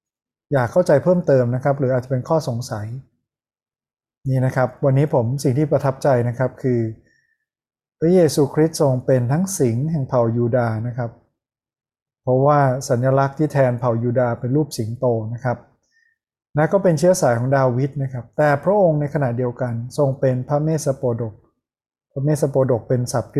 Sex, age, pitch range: male, 20-39, 120-145 Hz